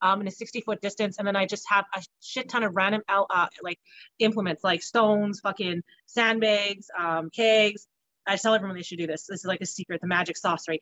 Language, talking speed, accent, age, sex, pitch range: English, 225 wpm, American, 30-49, female, 195-230 Hz